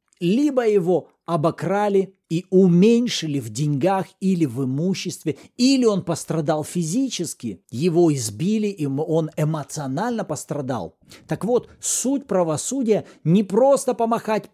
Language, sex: Russian, male